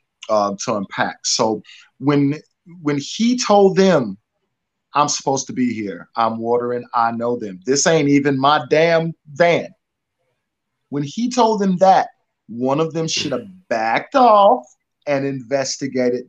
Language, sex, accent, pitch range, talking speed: English, male, American, 125-175 Hz, 145 wpm